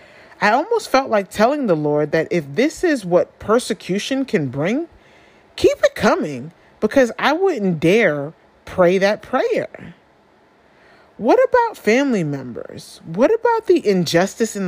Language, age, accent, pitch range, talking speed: English, 30-49, American, 165-250 Hz, 140 wpm